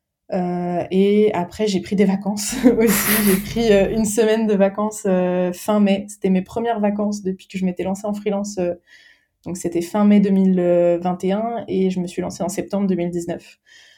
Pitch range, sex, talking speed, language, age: 180-205 Hz, female, 185 wpm, French, 20-39